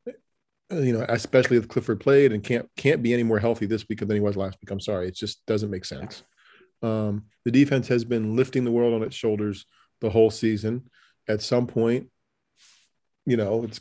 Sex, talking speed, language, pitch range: male, 205 wpm, English, 105-125 Hz